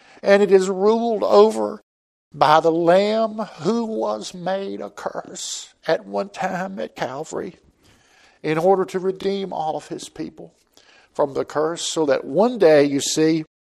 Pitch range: 120-165 Hz